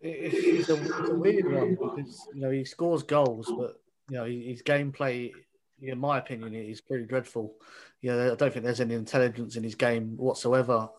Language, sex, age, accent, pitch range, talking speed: English, male, 20-39, British, 115-130 Hz, 200 wpm